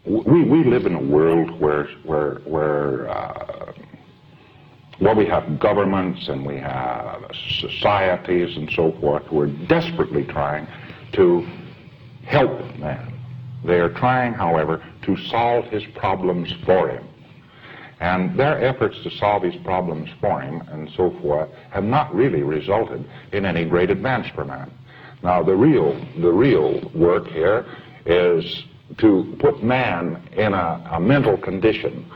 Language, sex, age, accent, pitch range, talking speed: English, male, 60-79, American, 80-125 Hz, 140 wpm